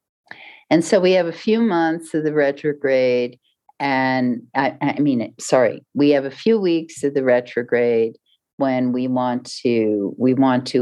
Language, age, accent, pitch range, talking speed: English, 50-69, American, 130-165 Hz, 165 wpm